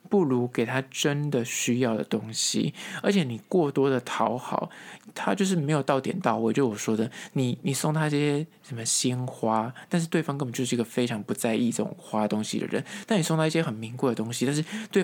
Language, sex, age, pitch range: Chinese, male, 20-39, 120-155 Hz